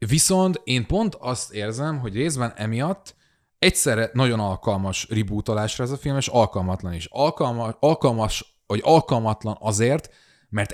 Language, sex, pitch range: Hungarian, male, 95-130 Hz